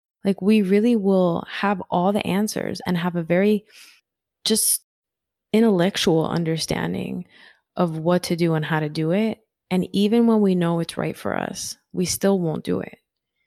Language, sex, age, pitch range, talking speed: English, female, 20-39, 170-205 Hz, 170 wpm